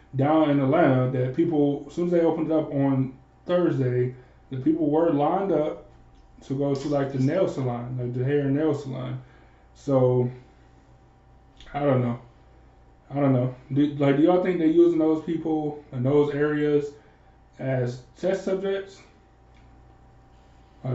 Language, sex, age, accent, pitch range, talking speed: English, male, 20-39, American, 125-145 Hz, 155 wpm